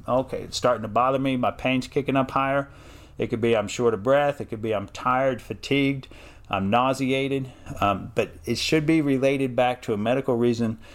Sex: male